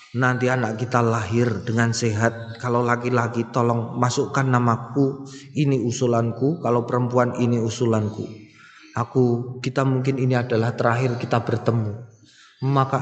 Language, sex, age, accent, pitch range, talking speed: Indonesian, male, 20-39, native, 120-165 Hz, 120 wpm